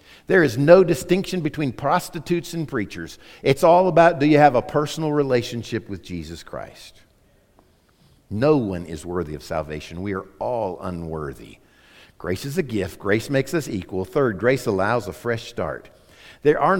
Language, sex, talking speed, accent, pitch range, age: English, male, 165 wpm, American, 120-190 Hz, 50-69